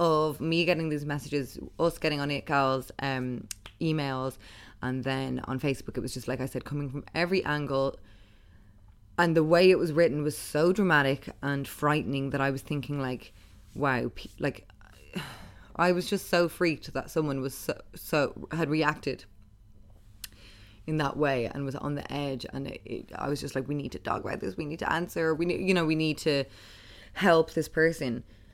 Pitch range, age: 105-150 Hz, 20-39